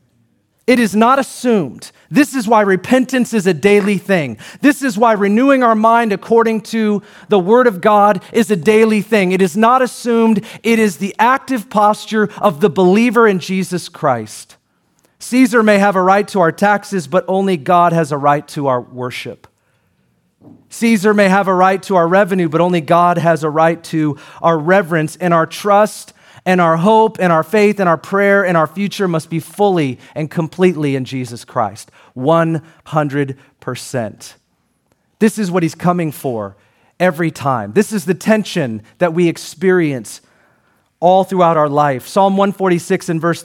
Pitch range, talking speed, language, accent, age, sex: 150-205 Hz, 170 wpm, English, American, 40-59, male